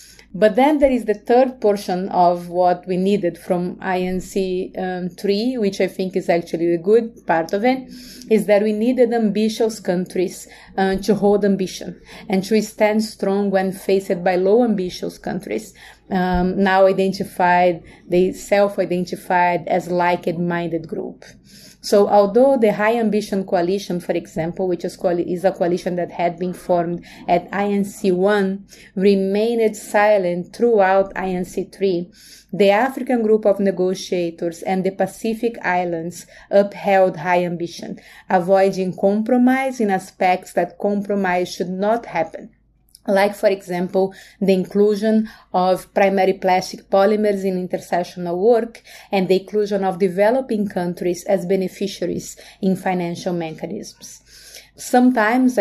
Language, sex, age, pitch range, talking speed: English, female, 30-49, 185-215 Hz, 130 wpm